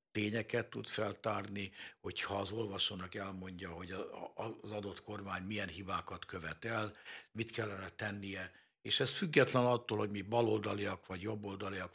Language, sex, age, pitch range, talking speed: Hungarian, male, 60-79, 105-130 Hz, 135 wpm